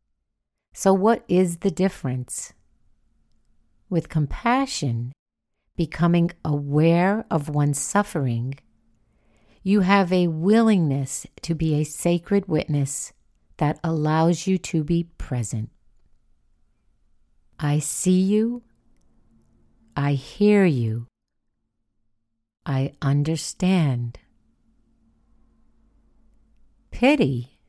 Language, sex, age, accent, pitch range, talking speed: English, female, 60-79, American, 130-185 Hz, 80 wpm